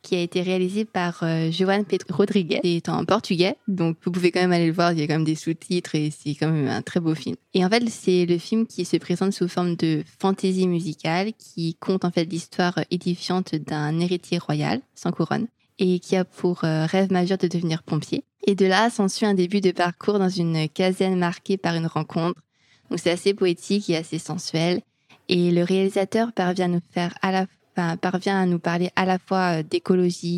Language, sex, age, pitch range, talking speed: French, female, 20-39, 165-190 Hz, 215 wpm